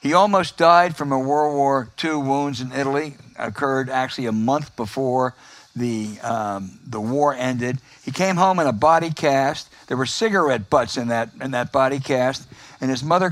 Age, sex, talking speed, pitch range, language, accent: 60-79, male, 185 wpm, 135-185 Hz, English, American